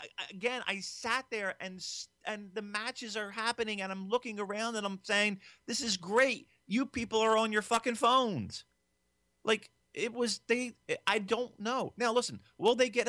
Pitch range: 175-220 Hz